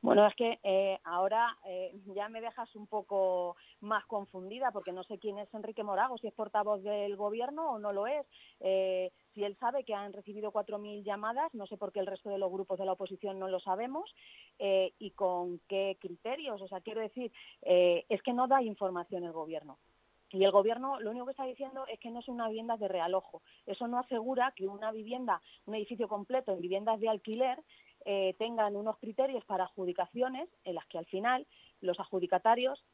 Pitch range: 190-245 Hz